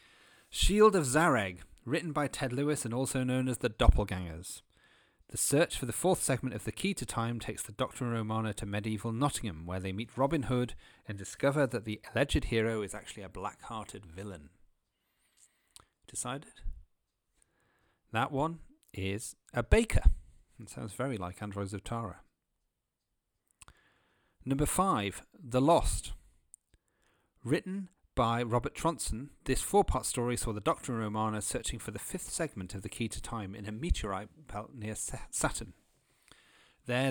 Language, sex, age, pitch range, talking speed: English, male, 40-59, 100-130 Hz, 150 wpm